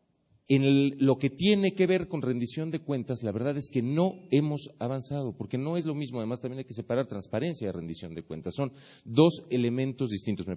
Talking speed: 215 wpm